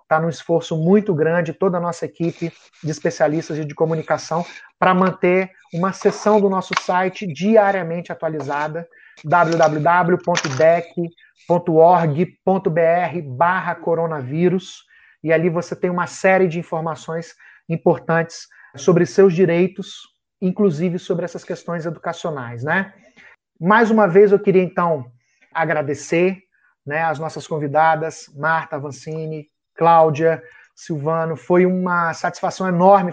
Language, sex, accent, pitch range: Portuguese, male, Brazilian, 160-190 Hz